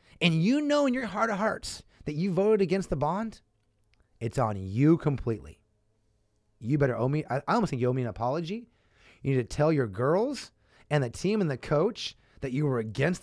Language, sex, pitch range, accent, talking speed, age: English, male, 105-145 Hz, American, 210 wpm, 30-49